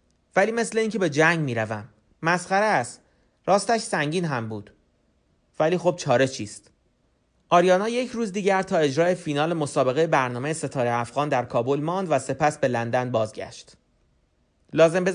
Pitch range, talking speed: 135-175 Hz, 145 wpm